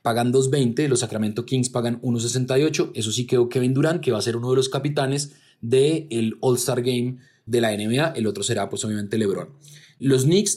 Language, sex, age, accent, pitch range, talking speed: Spanish, male, 20-39, Colombian, 120-145 Hz, 200 wpm